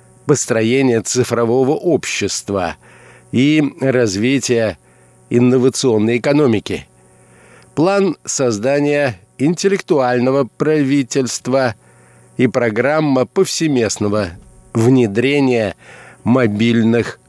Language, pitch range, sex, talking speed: Russian, 105-140 Hz, male, 55 wpm